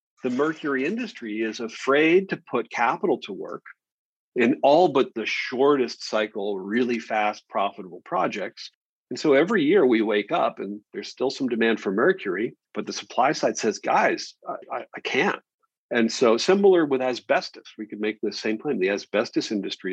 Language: English